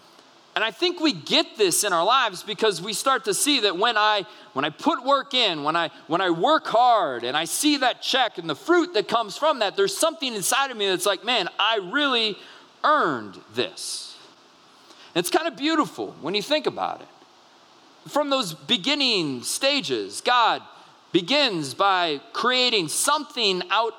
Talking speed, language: 180 wpm, English